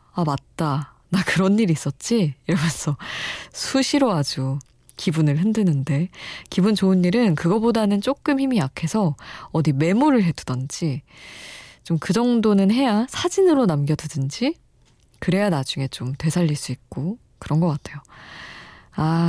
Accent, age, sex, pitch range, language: native, 20-39, female, 150-210 Hz, Korean